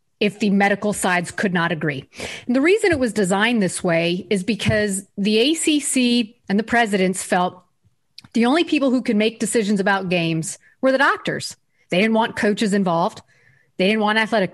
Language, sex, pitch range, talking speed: English, female, 180-230 Hz, 180 wpm